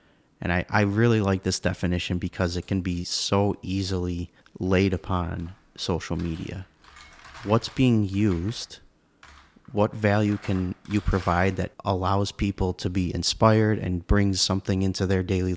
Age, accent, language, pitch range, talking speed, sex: 30-49, American, English, 90-100 Hz, 145 wpm, male